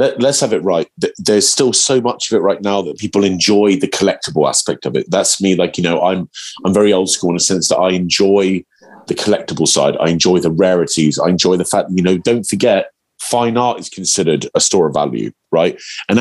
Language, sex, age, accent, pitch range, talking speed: English, male, 30-49, British, 90-110 Hz, 225 wpm